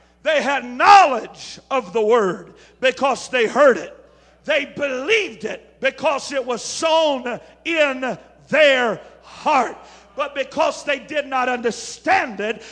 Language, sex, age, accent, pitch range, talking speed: English, male, 50-69, American, 260-320 Hz, 125 wpm